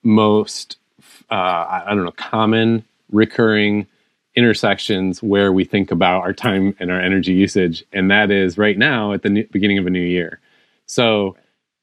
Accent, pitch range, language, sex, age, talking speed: American, 95-115 Hz, English, male, 30-49, 160 wpm